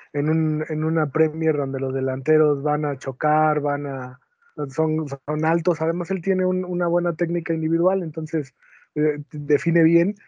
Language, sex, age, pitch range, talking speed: Spanish, male, 20-39, 145-170 Hz, 165 wpm